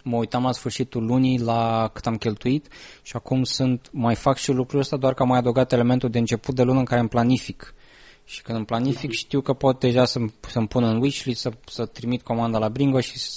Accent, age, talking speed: native, 20-39, 230 wpm